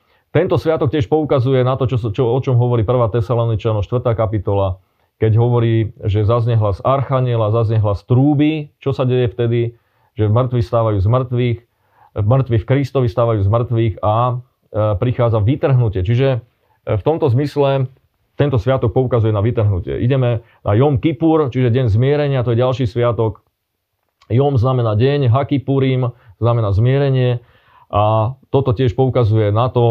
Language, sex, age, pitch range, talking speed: Slovak, male, 30-49, 105-130 Hz, 155 wpm